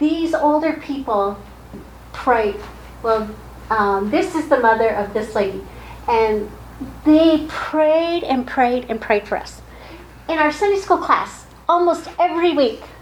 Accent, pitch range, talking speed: American, 230-330 Hz, 140 wpm